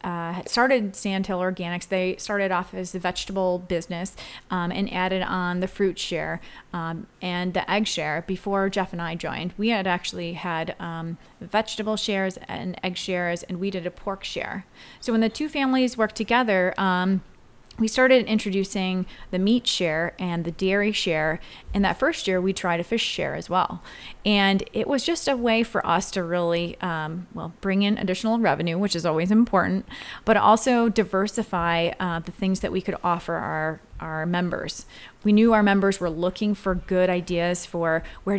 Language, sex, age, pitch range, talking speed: English, female, 30-49, 175-205 Hz, 185 wpm